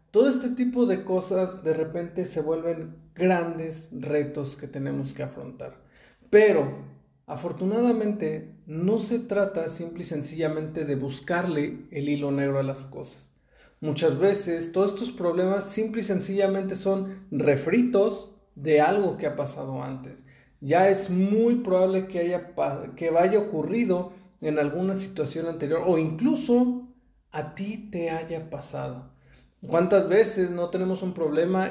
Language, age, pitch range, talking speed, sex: Spanish, 40-59, 150-195 Hz, 140 wpm, male